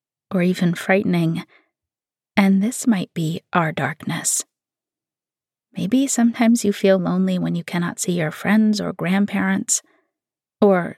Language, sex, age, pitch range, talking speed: English, female, 30-49, 180-220 Hz, 125 wpm